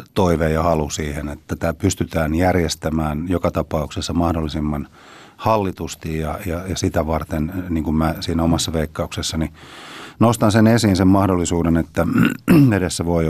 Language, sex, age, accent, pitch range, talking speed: Finnish, male, 30-49, native, 80-95 Hz, 140 wpm